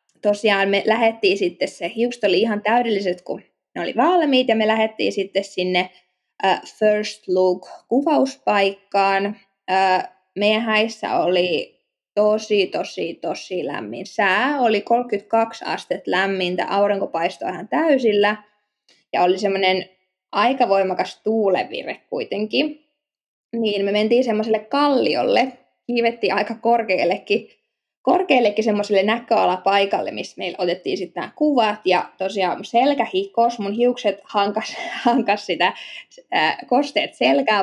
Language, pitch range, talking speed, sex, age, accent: Finnish, 190-235 Hz, 120 wpm, female, 20-39, native